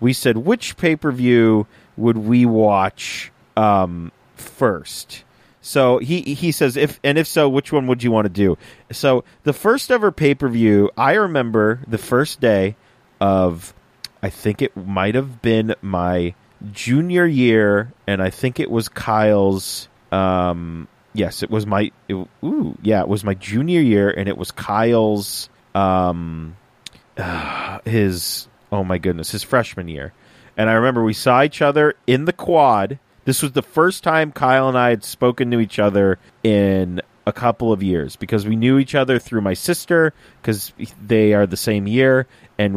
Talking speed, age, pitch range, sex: 175 wpm, 30-49, 100-130 Hz, male